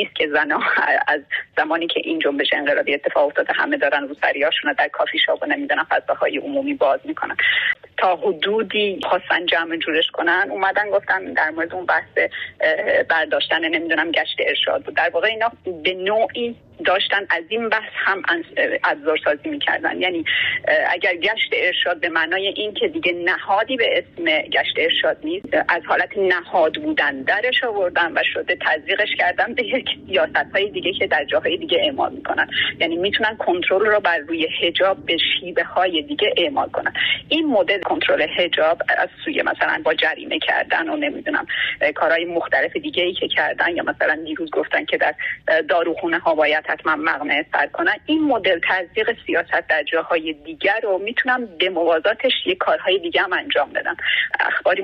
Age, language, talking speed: 30-49, Persian, 160 wpm